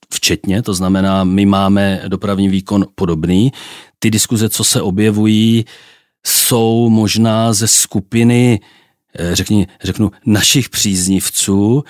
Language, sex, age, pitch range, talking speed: Czech, male, 40-59, 100-120 Hz, 105 wpm